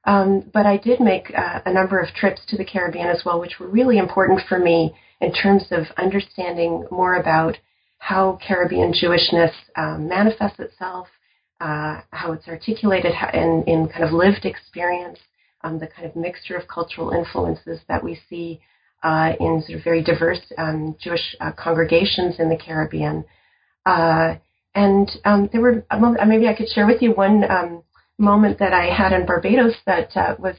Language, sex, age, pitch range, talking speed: English, female, 40-59, 165-195 Hz, 175 wpm